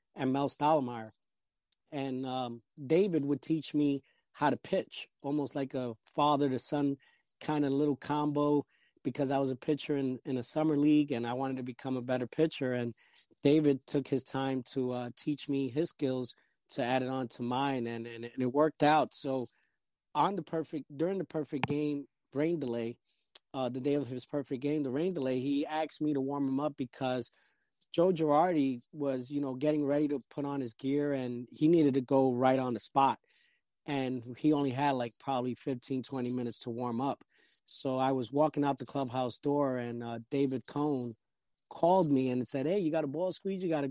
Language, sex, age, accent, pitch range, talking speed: English, male, 30-49, American, 130-150 Hz, 205 wpm